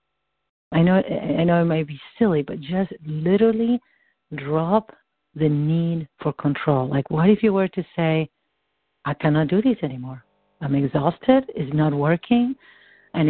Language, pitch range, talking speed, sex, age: English, 155-195 Hz, 155 wpm, female, 50-69